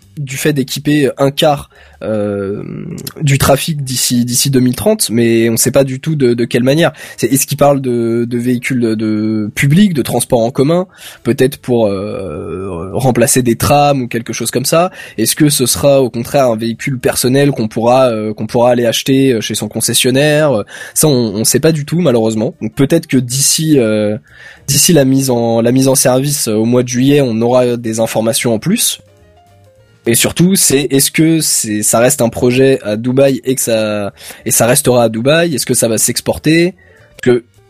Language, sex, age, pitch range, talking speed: French, male, 20-39, 115-140 Hz, 195 wpm